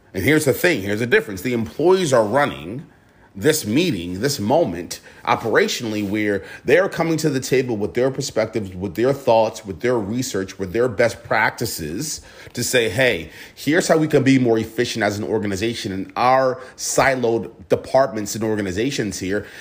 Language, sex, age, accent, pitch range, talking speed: English, male, 30-49, American, 105-140 Hz, 170 wpm